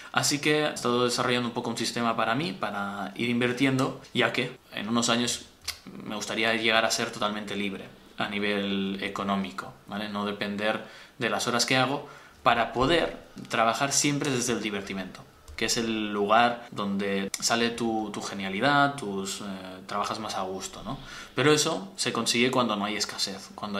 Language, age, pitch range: Spanish, 20-39, 100-120 Hz